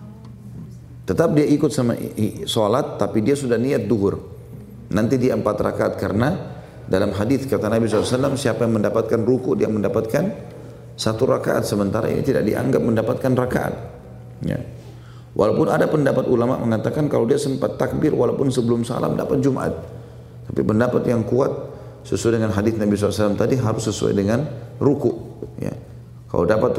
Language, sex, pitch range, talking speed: English, male, 100-120 Hz, 145 wpm